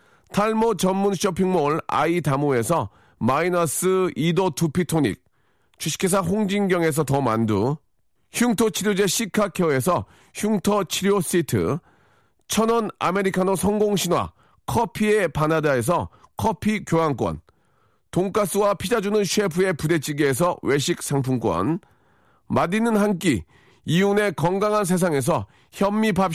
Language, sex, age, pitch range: Korean, male, 40-59, 160-210 Hz